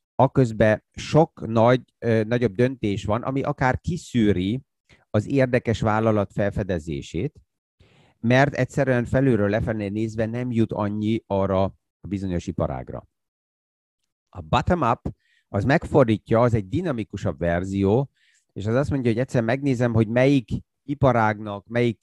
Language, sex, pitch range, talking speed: Hungarian, male, 100-125 Hz, 120 wpm